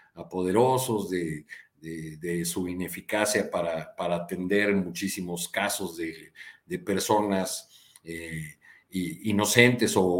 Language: Spanish